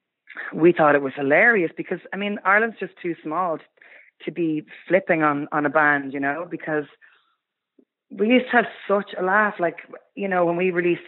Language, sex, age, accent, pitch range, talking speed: English, female, 30-49, Irish, 145-185 Hz, 195 wpm